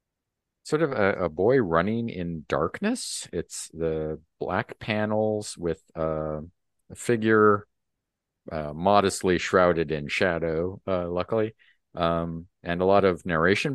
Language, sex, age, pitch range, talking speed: English, male, 50-69, 85-120 Hz, 125 wpm